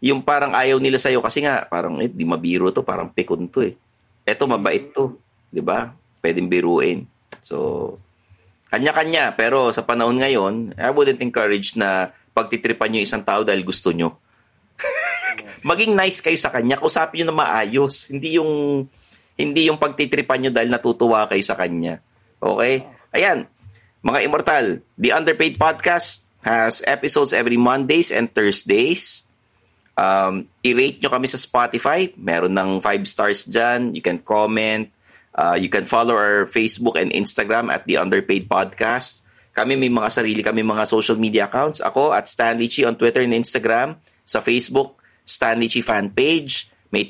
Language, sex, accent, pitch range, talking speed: English, male, Filipino, 100-135 Hz, 155 wpm